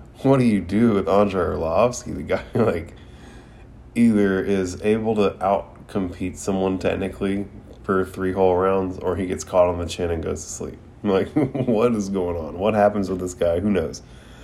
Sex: male